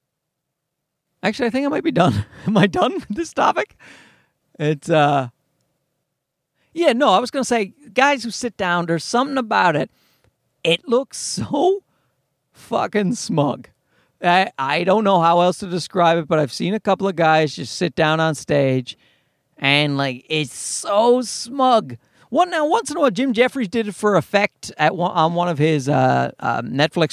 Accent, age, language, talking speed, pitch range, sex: American, 40-59, English, 180 wpm, 150-215 Hz, male